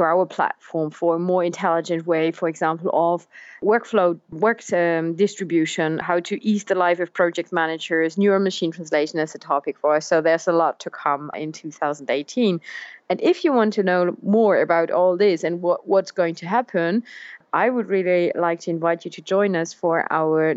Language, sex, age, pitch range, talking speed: English, female, 30-49, 155-185 Hz, 195 wpm